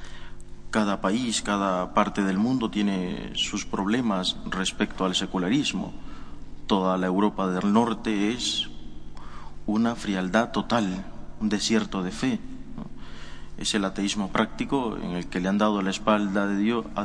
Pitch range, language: 80-115 Hz, Spanish